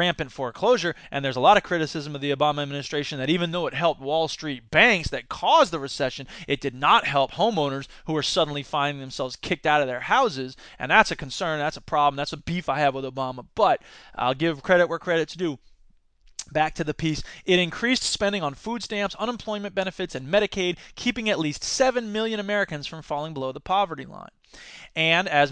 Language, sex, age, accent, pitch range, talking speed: English, male, 20-39, American, 145-195 Hz, 205 wpm